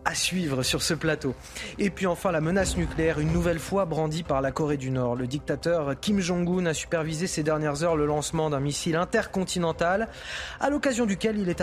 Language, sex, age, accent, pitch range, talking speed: French, male, 30-49, French, 150-190 Hz, 200 wpm